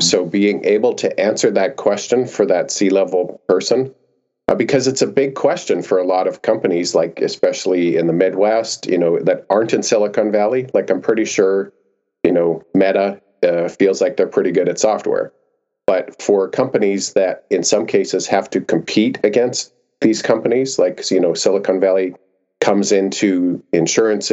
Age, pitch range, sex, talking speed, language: 40-59, 95-135 Hz, male, 175 wpm, English